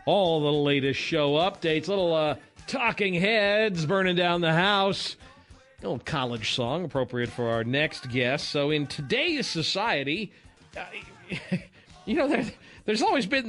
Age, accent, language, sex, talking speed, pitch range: 40-59, American, English, male, 140 wpm, 145-210 Hz